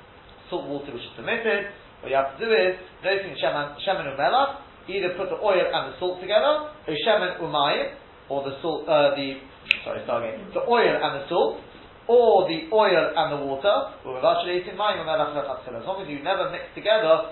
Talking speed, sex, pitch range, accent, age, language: 200 wpm, male, 145-225 Hz, British, 40-59, English